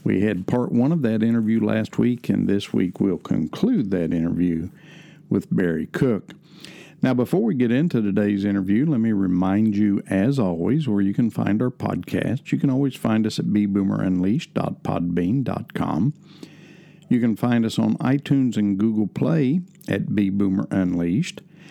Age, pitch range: 50-69, 100-130 Hz